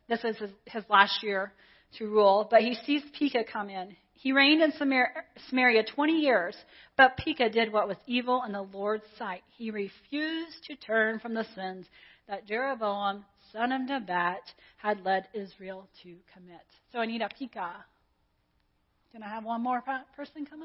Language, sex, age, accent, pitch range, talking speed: English, female, 40-59, American, 205-275 Hz, 170 wpm